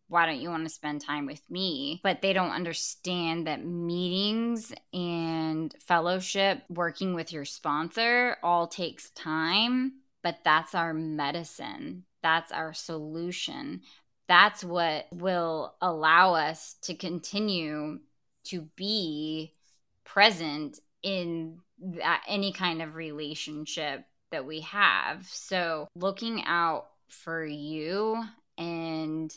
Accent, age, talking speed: American, 20-39, 110 wpm